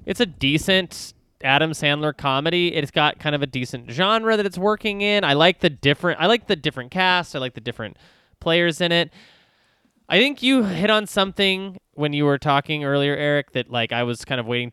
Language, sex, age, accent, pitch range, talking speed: English, male, 20-39, American, 125-180 Hz, 210 wpm